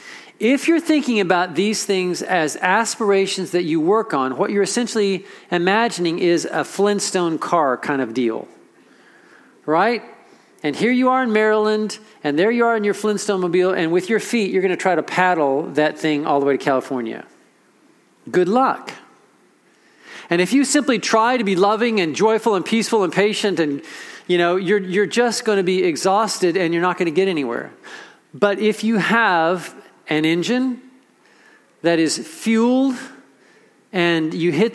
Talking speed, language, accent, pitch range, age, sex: 175 wpm, English, American, 180-240 Hz, 40-59, male